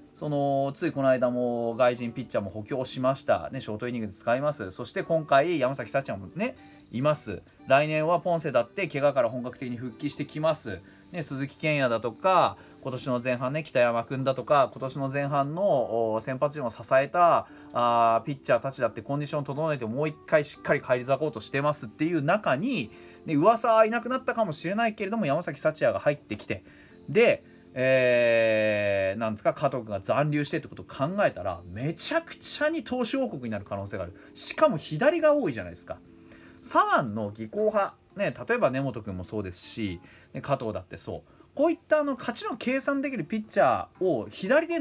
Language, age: Japanese, 30-49